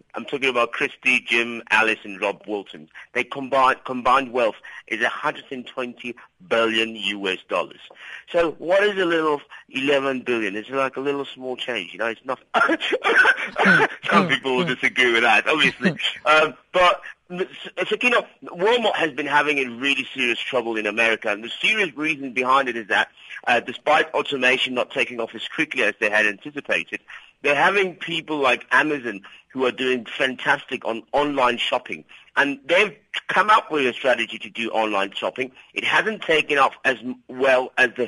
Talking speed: 170 wpm